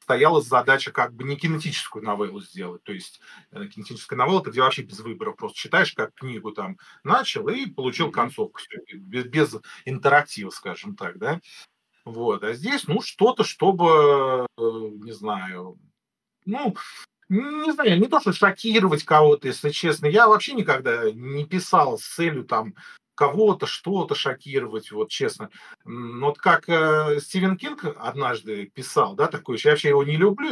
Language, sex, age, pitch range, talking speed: Russian, male, 40-59, 145-215 Hz, 155 wpm